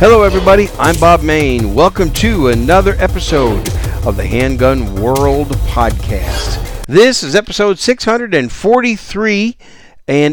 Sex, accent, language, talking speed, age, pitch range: male, American, English, 110 wpm, 50-69, 105-140 Hz